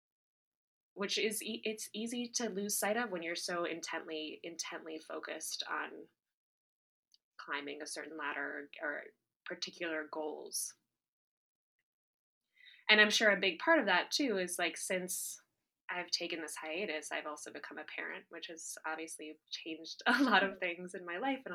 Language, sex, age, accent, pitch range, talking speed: English, female, 20-39, American, 155-215 Hz, 155 wpm